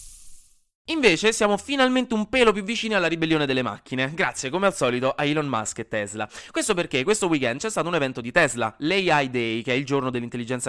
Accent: native